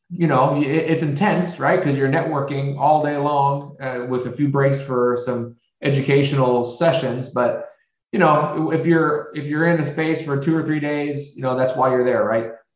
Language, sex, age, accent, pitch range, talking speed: English, male, 30-49, American, 130-160 Hz, 200 wpm